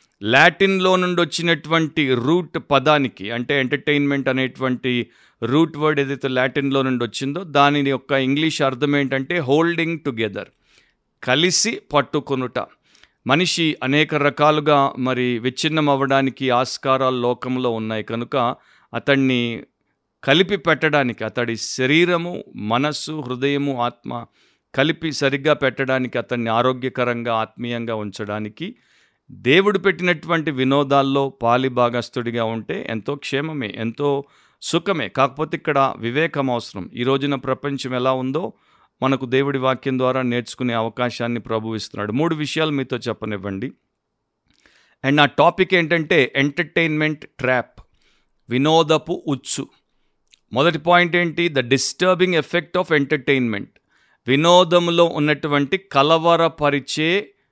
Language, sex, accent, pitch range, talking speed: Telugu, male, native, 125-155 Hz, 100 wpm